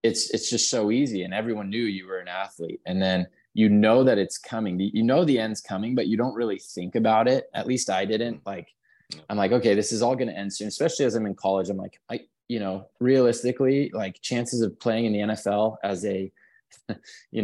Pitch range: 95-110 Hz